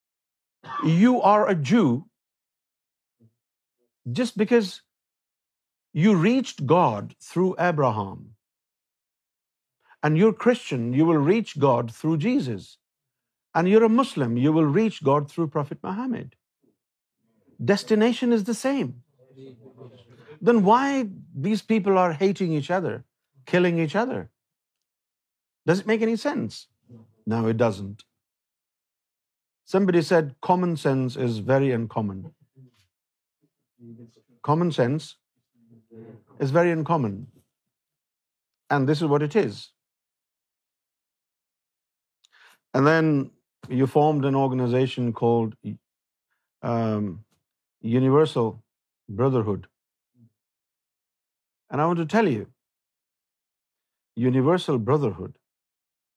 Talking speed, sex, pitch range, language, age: 95 wpm, male, 120-180 Hz, Urdu, 50-69